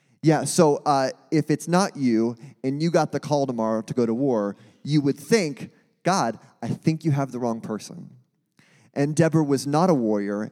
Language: English